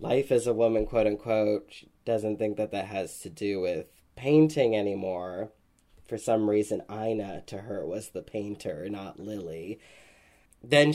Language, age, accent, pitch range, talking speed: English, 20-39, American, 100-125 Hz, 150 wpm